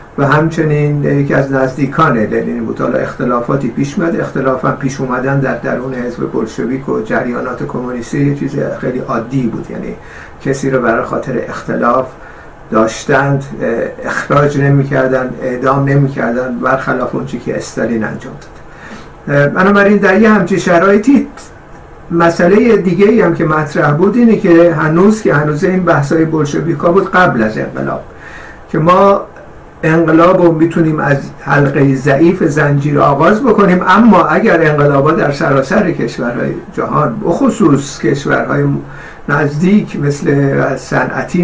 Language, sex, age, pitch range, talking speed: Persian, male, 60-79, 130-170 Hz, 130 wpm